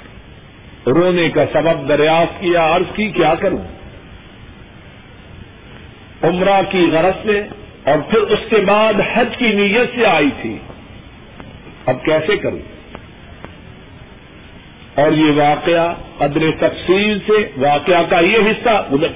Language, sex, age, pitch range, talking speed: Urdu, male, 50-69, 155-205 Hz, 120 wpm